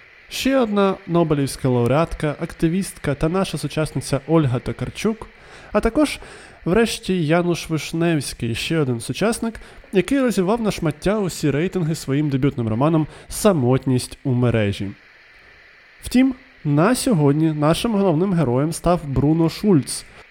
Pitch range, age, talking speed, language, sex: 135-195 Hz, 20-39, 115 wpm, Ukrainian, male